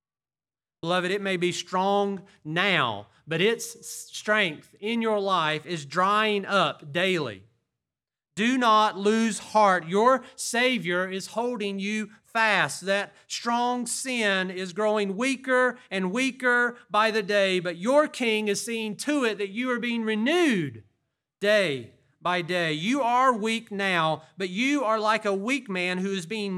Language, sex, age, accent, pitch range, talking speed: English, male, 40-59, American, 155-225 Hz, 150 wpm